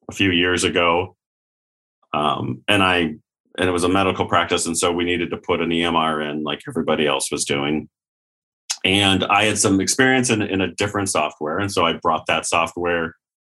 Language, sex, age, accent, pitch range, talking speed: English, male, 30-49, American, 85-110 Hz, 190 wpm